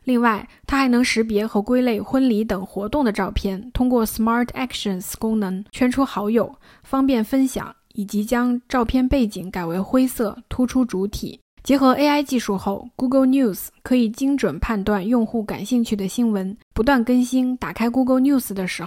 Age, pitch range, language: 20-39, 210-255 Hz, Chinese